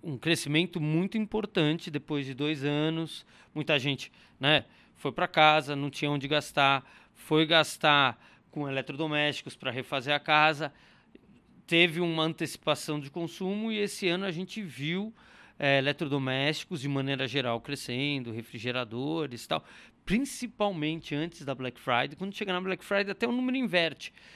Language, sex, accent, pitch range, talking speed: Portuguese, male, Brazilian, 135-175 Hz, 145 wpm